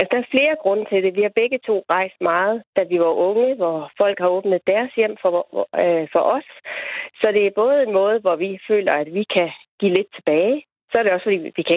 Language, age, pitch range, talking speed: Danish, 30-49, 175-220 Hz, 235 wpm